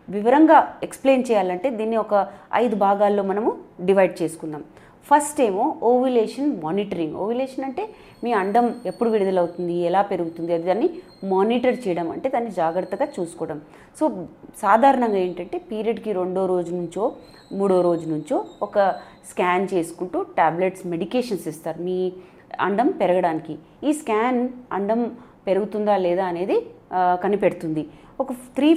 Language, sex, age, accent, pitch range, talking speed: English, female, 30-49, Indian, 180-245 Hz, 85 wpm